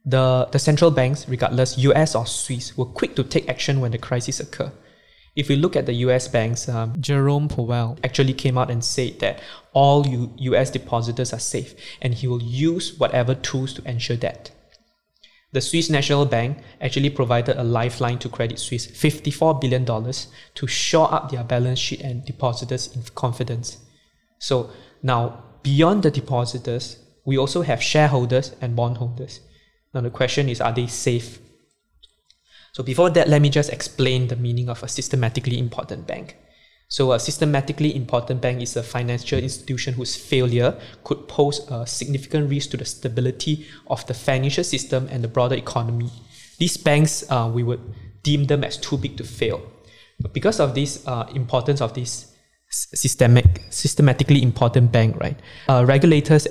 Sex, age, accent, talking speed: male, 20-39, Malaysian, 165 wpm